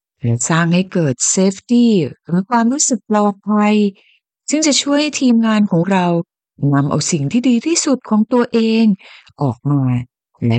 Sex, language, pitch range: female, Thai, 145-225 Hz